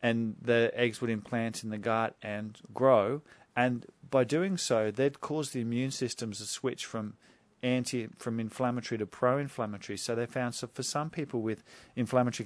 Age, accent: 40-59, Australian